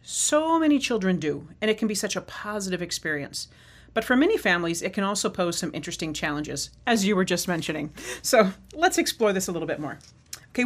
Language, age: English, 40-59